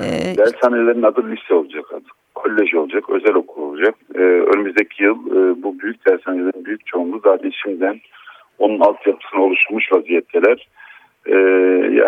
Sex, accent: male, native